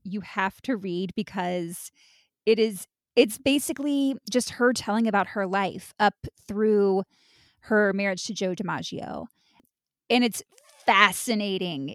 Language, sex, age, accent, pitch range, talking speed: English, female, 20-39, American, 190-230 Hz, 125 wpm